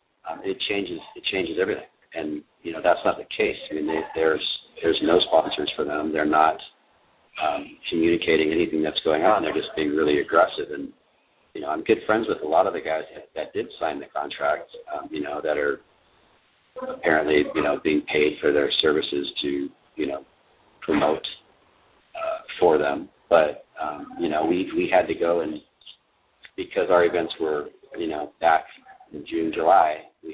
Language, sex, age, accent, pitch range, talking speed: English, male, 40-59, American, 335-435 Hz, 185 wpm